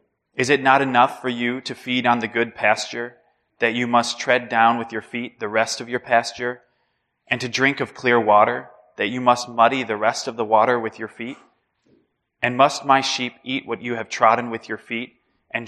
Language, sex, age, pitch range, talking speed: English, male, 20-39, 115-125 Hz, 215 wpm